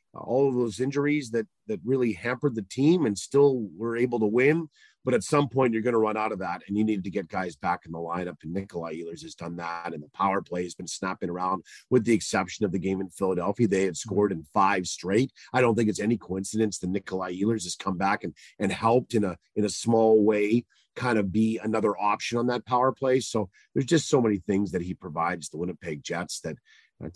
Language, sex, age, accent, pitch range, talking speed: English, male, 40-59, American, 95-125 Hz, 240 wpm